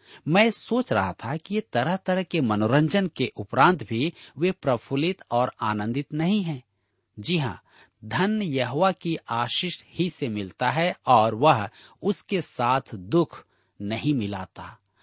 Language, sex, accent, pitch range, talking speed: Hindi, male, native, 110-165 Hz, 145 wpm